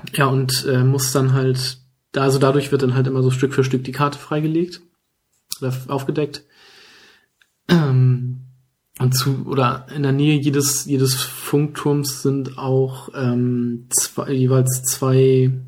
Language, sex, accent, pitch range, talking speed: German, male, German, 130-145 Hz, 145 wpm